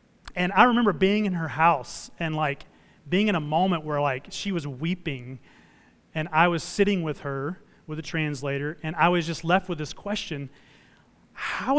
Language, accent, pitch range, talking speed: English, American, 160-220 Hz, 185 wpm